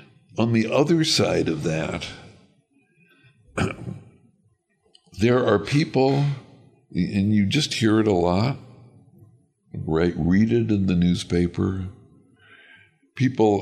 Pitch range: 90-130 Hz